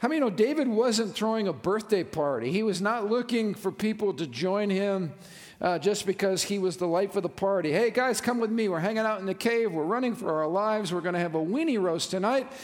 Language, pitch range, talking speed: English, 170-215 Hz, 255 wpm